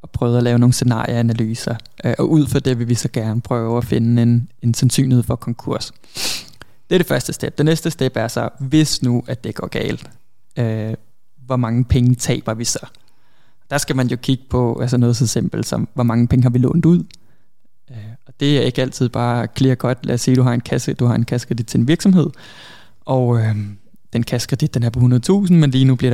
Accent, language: native, Danish